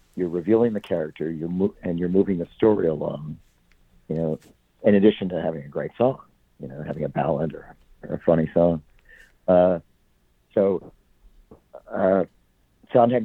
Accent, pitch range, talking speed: American, 70-95 Hz, 160 wpm